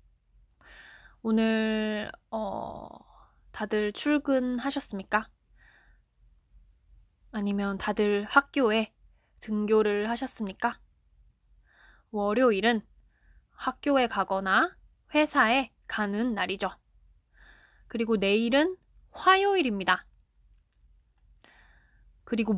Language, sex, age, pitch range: Korean, female, 20-39, 200-265 Hz